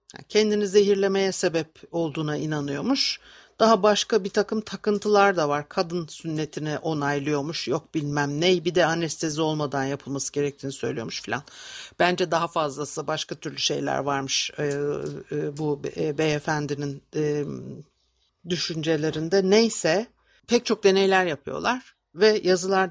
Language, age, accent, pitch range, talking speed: Turkish, 60-79, native, 155-225 Hz, 115 wpm